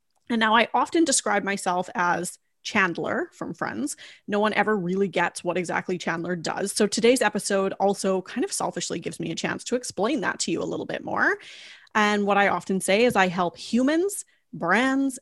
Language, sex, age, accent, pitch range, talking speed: English, female, 30-49, American, 180-225 Hz, 195 wpm